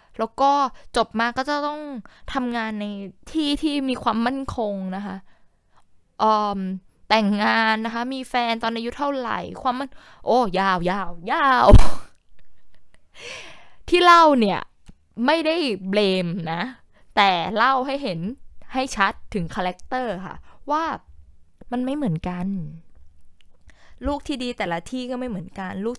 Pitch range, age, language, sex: 180-255 Hz, 20-39, Thai, female